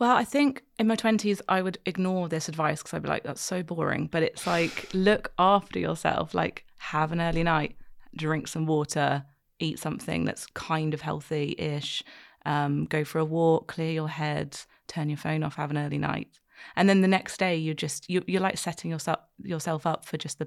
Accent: British